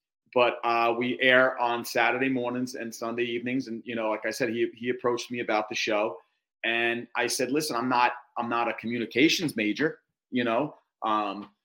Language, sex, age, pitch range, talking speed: English, male, 30-49, 110-125 Hz, 190 wpm